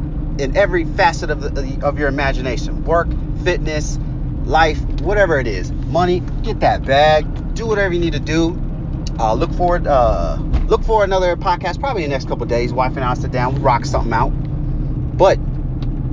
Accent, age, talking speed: American, 30-49, 180 wpm